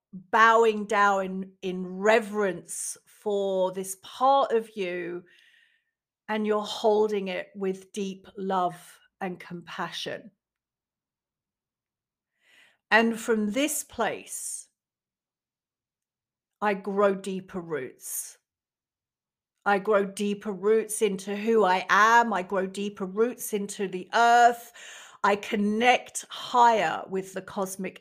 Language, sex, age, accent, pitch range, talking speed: English, female, 40-59, British, 190-235 Hz, 105 wpm